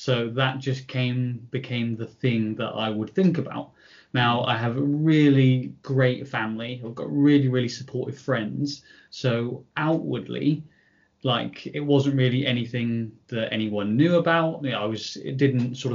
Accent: British